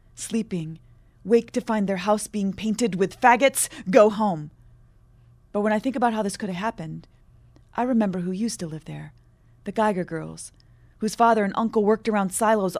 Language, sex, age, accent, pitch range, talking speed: English, female, 30-49, American, 175-225 Hz, 185 wpm